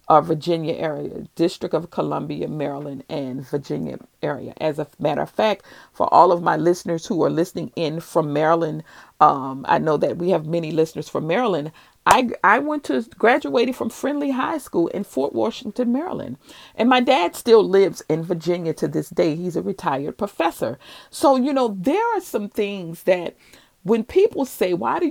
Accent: American